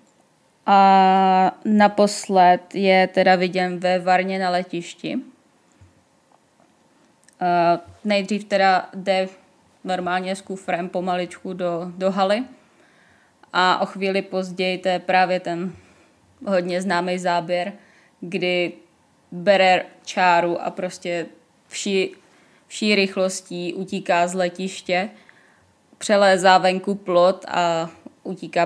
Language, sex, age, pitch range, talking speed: Czech, female, 20-39, 175-195 Hz, 95 wpm